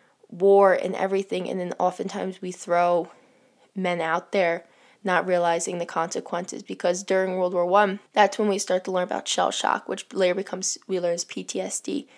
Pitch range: 180-215 Hz